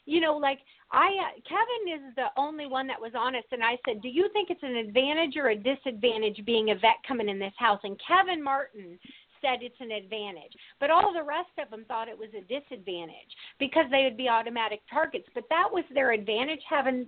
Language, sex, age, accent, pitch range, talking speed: English, female, 50-69, American, 230-290 Hz, 220 wpm